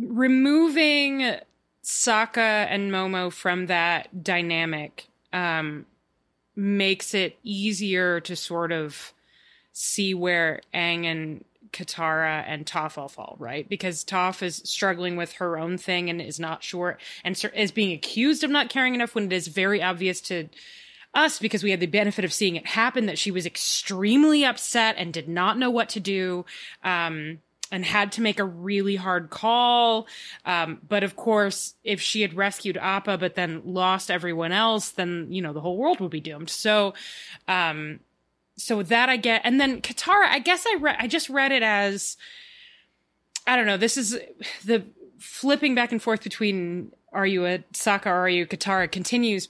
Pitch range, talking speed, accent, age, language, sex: 175-230 Hz, 175 wpm, American, 20-39, English, female